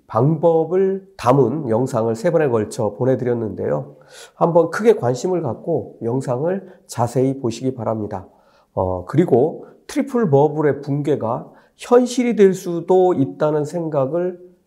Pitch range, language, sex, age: 120-170 Hz, Korean, male, 40-59